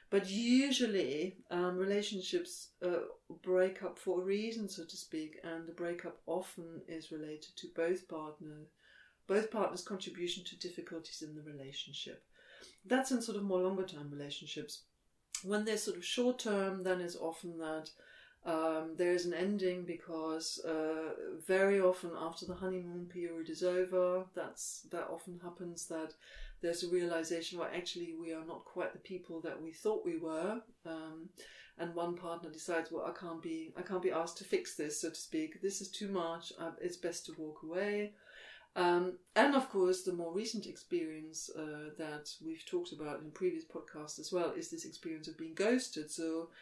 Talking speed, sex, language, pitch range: 175 wpm, female, English, 165-210 Hz